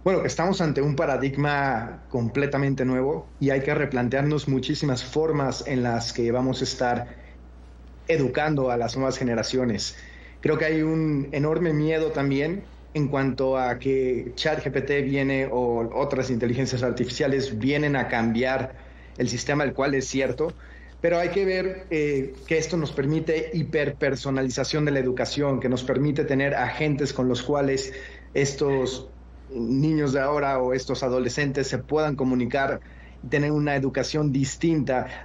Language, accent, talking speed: Spanish, Mexican, 145 wpm